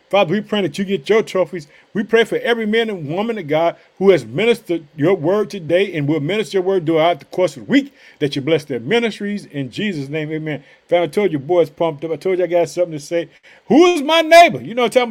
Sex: male